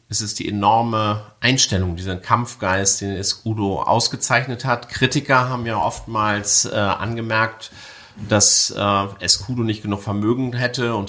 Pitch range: 105-125 Hz